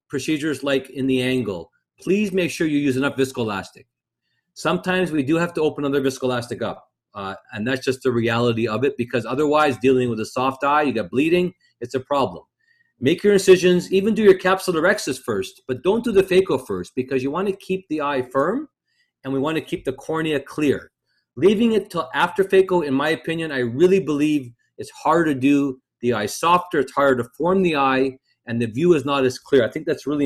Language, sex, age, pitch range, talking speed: Portuguese, male, 40-59, 130-180 Hz, 210 wpm